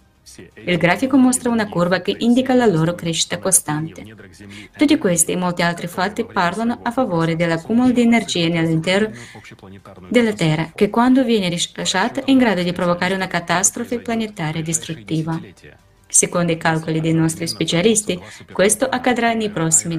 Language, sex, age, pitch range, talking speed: Italian, female, 20-39, 165-215 Hz, 145 wpm